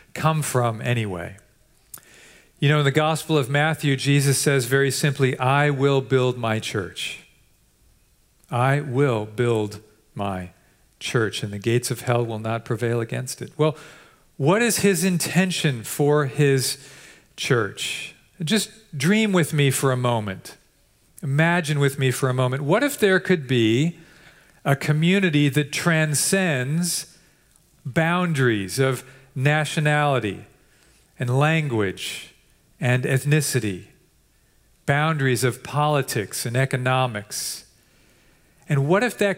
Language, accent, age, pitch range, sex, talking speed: English, American, 40-59, 125-160 Hz, male, 120 wpm